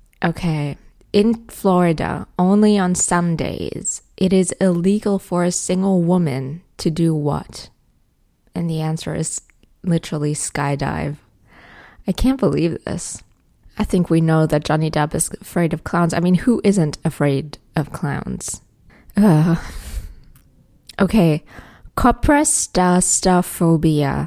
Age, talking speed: 20-39, 115 wpm